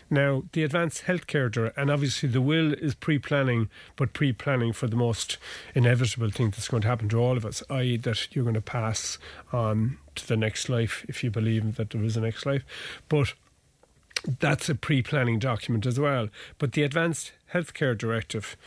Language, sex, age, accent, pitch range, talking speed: English, male, 40-59, Irish, 115-145 Hz, 195 wpm